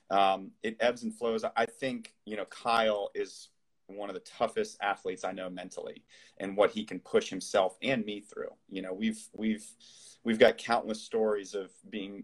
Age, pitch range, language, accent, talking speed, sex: 30-49, 95-155 Hz, English, American, 185 wpm, male